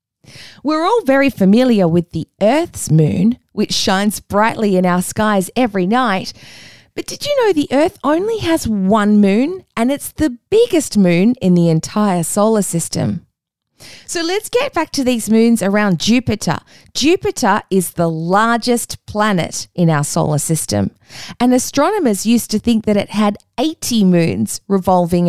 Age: 20-39